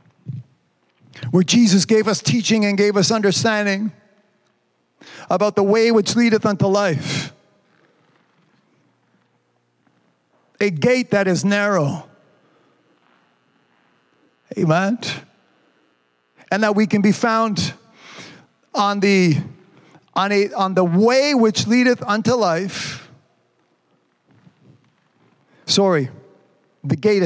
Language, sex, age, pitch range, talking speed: English, male, 40-59, 140-210 Hz, 90 wpm